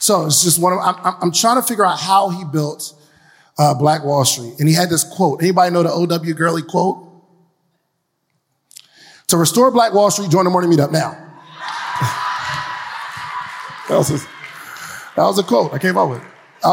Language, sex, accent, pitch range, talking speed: English, male, American, 150-185 Hz, 175 wpm